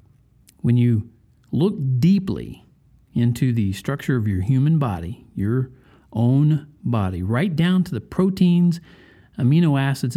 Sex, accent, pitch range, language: male, American, 115-165 Hz, English